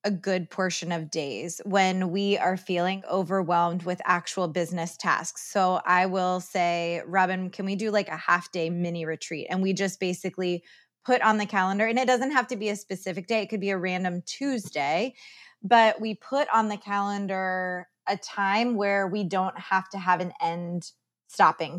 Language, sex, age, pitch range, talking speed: English, female, 20-39, 180-210 Hz, 185 wpm